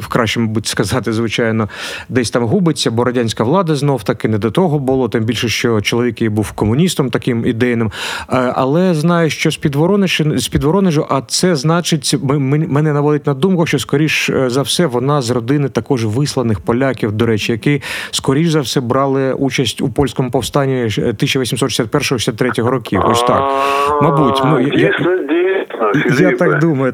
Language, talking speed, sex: Ukrainian, 150 wpm, male